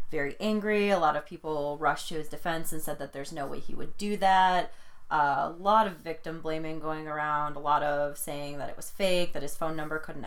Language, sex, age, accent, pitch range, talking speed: English, female, 20-39, American, 150-180 Hz, 240 wpm